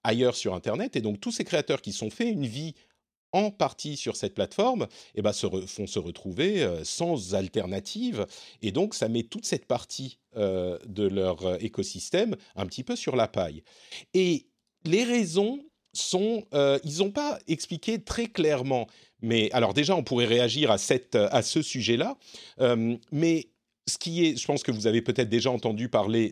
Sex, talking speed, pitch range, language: male, 185 wpm, 115-185 Hz, French